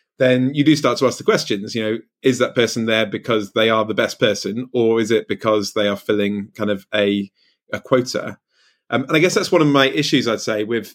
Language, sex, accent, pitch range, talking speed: English, male, British, 105-130 Hz, 240 wpm